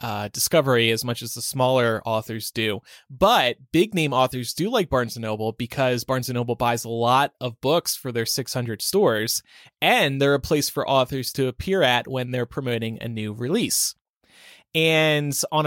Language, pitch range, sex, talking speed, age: English, 125-150 Hz, male, 185 wpm, 20-39